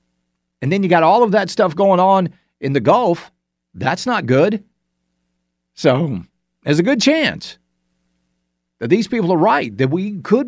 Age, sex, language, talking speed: 50-69, male, English, 165 wpm